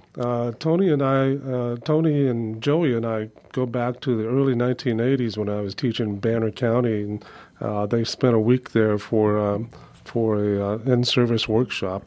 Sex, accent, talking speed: male, American, 180 wpm